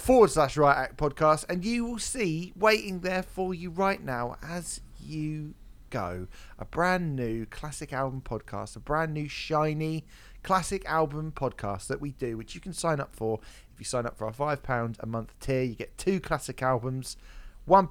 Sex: male